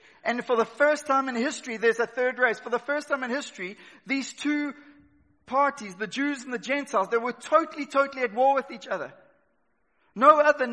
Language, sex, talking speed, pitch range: English, male, 200 wpm, 240-285 Hz